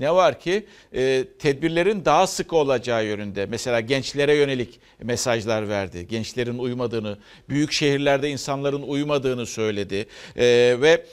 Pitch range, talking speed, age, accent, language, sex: 120-150 Hz, 115 wpm, 50-69, native, Turkish, male